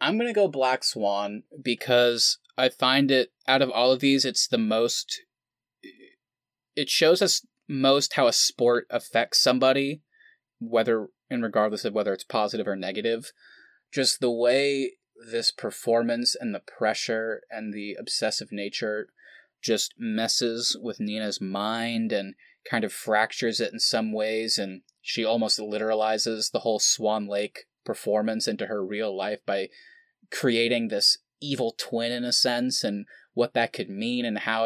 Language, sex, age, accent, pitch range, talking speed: English, male, 20-39, American, 110-135 Hz, 155 wpm